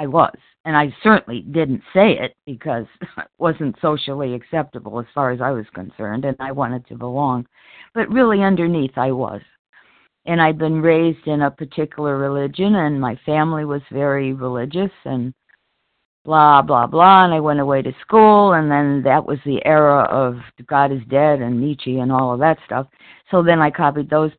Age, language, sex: 50-69, English, female